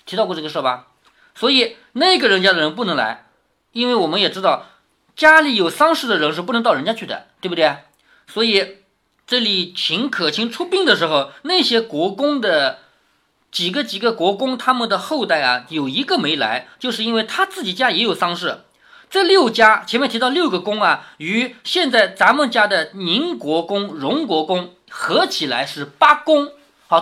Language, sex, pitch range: Chinese, male, 190-290 Hz